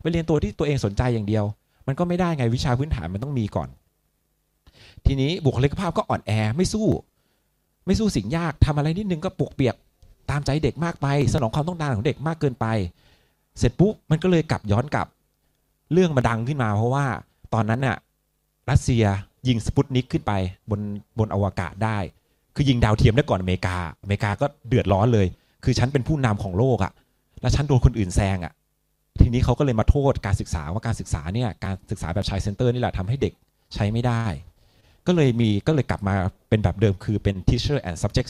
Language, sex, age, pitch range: Thai, male, 30-49, 100-145 Hz